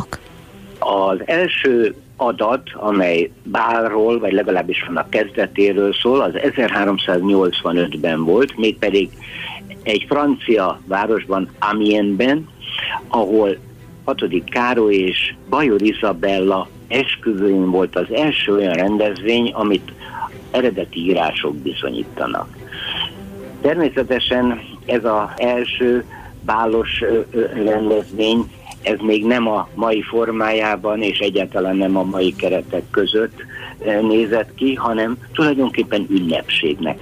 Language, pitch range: Hungarian, 100-120 Hz